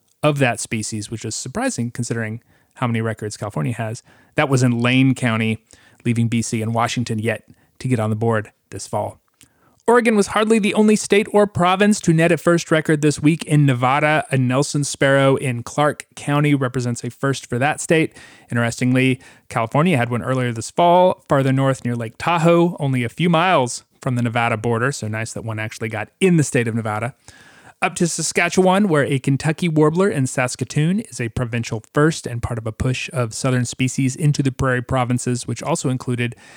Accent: American